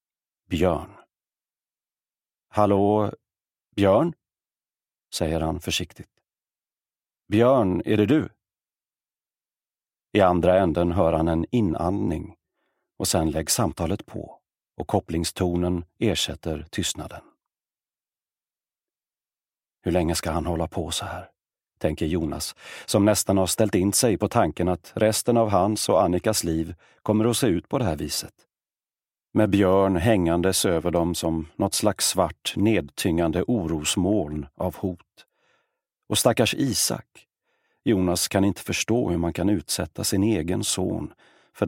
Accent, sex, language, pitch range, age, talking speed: native, male, Swedish, 85-100 Hz, 40-59, 125 wpm